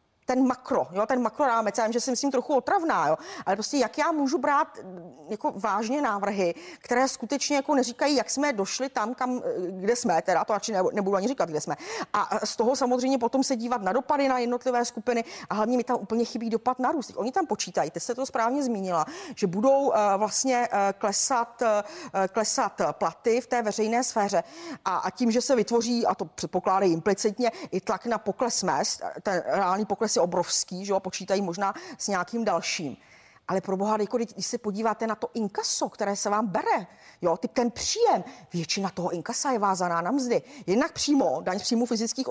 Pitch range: 200-260 Hz